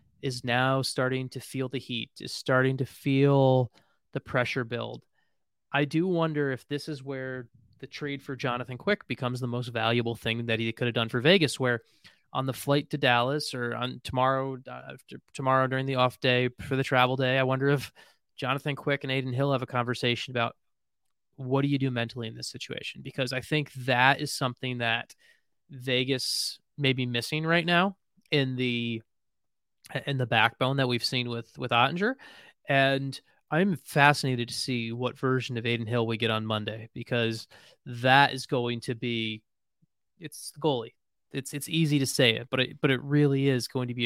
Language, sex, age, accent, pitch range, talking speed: English, male, 20-39, American, 120-140 Hz, 190 wpm